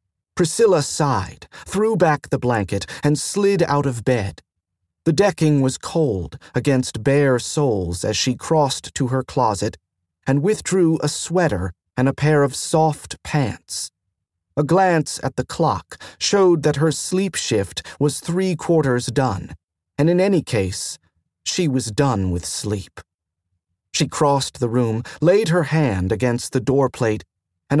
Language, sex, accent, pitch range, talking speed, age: English, male, American, 95-160 Hz, 145 wpm, 40-59